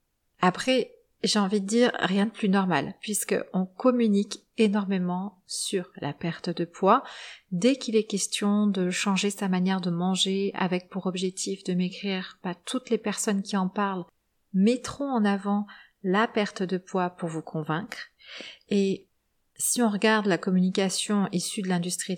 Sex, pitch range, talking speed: female, 180-210 Hz, 155 wpm